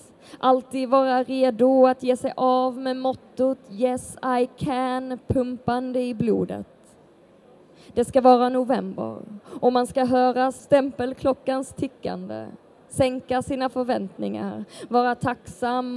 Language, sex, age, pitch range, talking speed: Swedish, female, 20-39, 235-260 Hz, 115 wpm